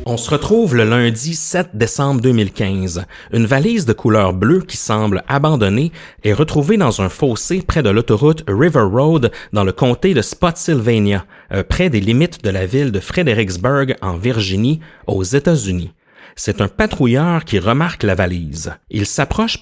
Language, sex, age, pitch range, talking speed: French, male, 30-49, 100-165 Hz, 160 wpm